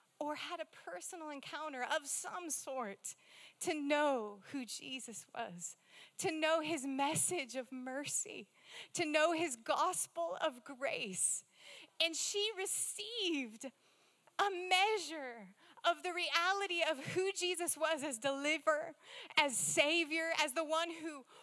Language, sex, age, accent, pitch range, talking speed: English, female, 30-49, American, 275-425 Hz, 125 wpm